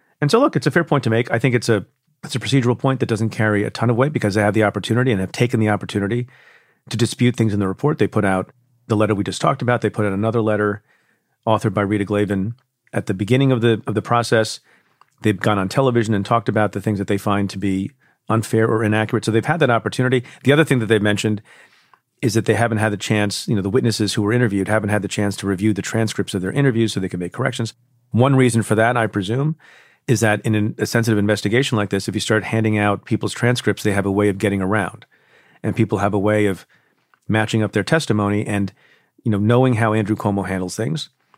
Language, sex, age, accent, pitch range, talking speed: English, male, 40-59, American, 105-120 Hz, 250 wpm